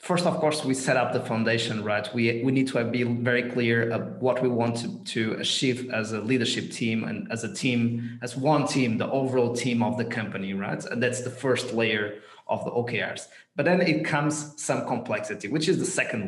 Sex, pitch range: male, 120-160 Hz